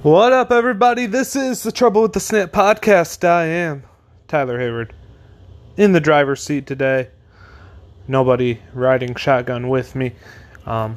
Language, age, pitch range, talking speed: English, 20-39, 100-145 Hz, 140 wpm